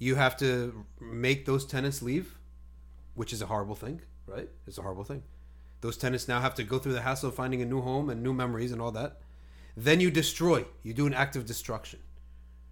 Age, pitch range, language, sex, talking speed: 30-49, 95-135 Hz, English, male, 215 wpm